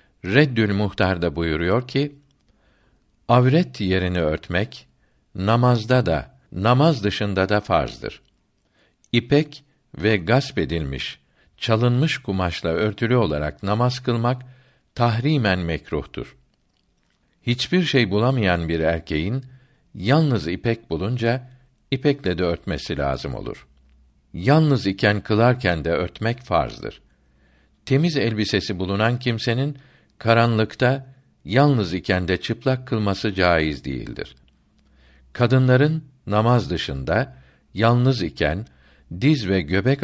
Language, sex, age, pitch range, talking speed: Turkish, male, 60-79, 85-125 Hz, 95 wpm